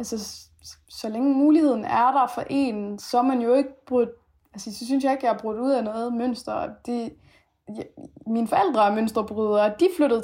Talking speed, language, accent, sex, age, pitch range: 190 wpm, Danish, native, female, 20-39, 215-250 Hz